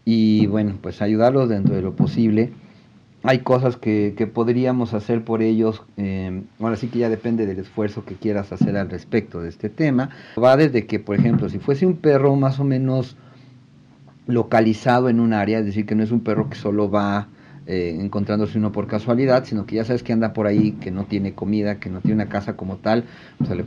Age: 40-59